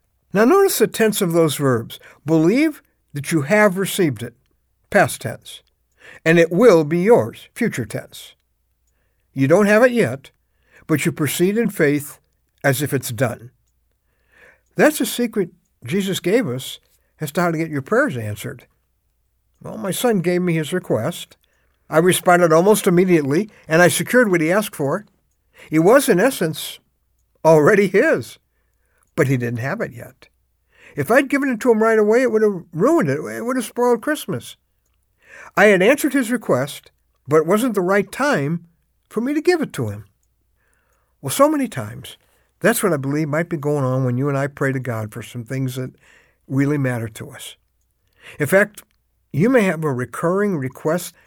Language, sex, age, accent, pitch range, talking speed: English, male, 60-79, American, 135-210 Hz, 175 wpm